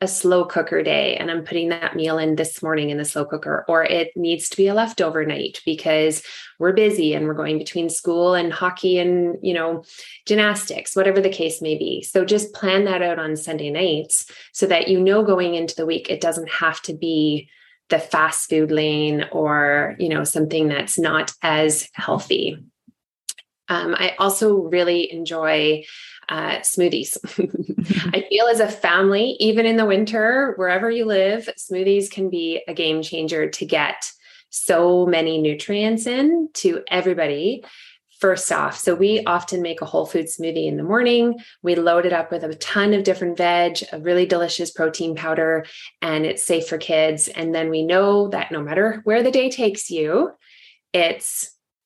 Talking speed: 180 wpm